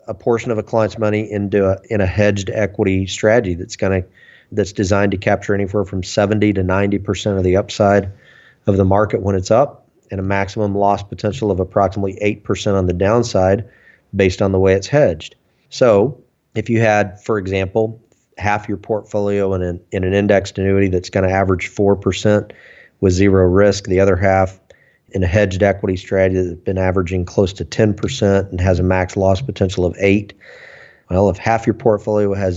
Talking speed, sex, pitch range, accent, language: 195 wpm, male, 95-105 Hz, American, English